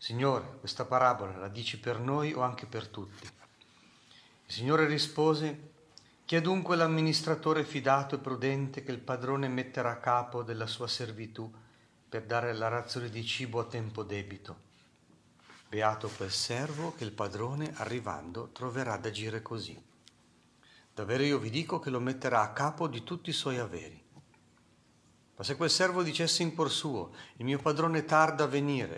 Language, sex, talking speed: Italian, male, 160 wpm